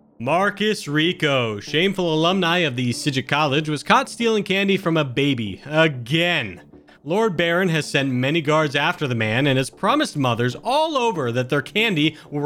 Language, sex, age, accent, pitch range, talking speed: English, male, 40-59, American, 130-185 Hz, 170 wpm